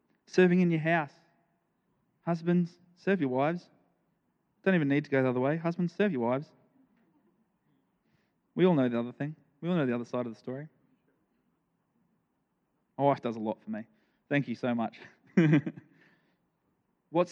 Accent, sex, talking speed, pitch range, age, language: Australian, male, 165 wpm, 125-160 Hz, 20-39, English